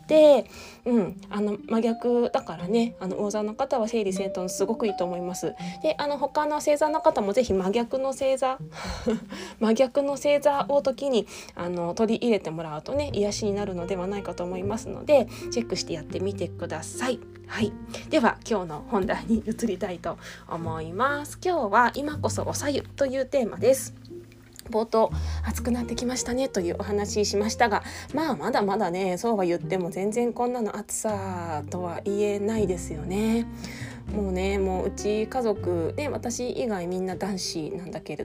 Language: Japanese